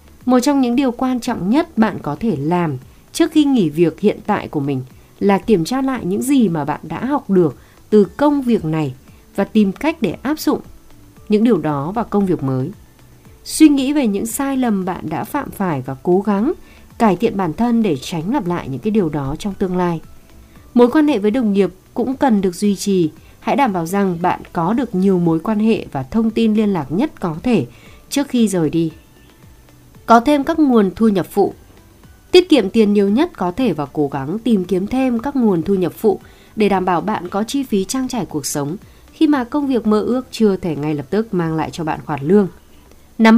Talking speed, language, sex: 225 wpm, Vietnamese, female